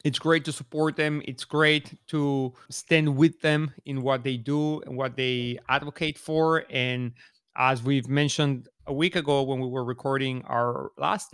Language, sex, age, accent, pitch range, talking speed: English, male, 30-49, Mexican, 130-155 Hz, 175 wpm